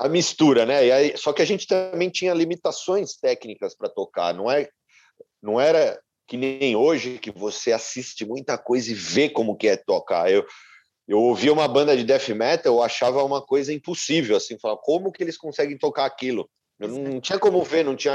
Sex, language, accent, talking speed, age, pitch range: male, Portuguese, Brazilian, 205 wpm, 40-59, 125-195 Hz